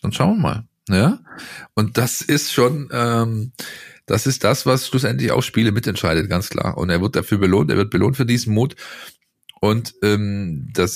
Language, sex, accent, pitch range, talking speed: German, male, German, 95-120 Hz, 185 wpm